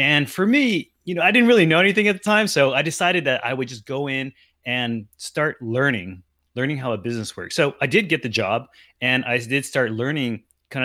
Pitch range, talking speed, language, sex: 110-145 Hz, 230 wpm, English, male